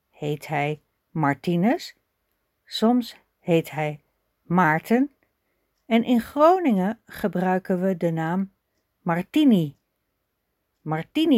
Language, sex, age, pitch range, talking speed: Dutch, female, 60-79, 160-235 Hz, 85 wpm